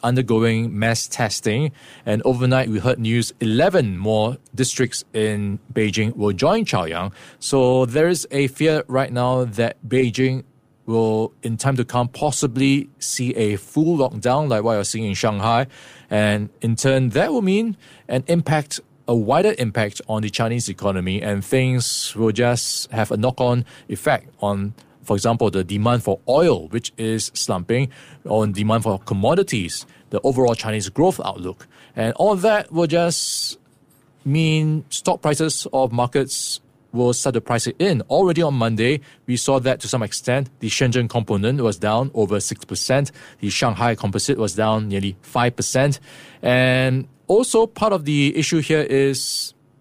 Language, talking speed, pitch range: English, 155 wpm, 110-140 Hz